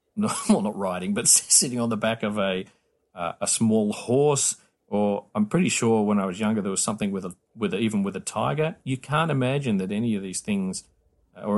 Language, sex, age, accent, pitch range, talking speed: English, male, 40-59, Australian, 110-145 Hz, 225 wpm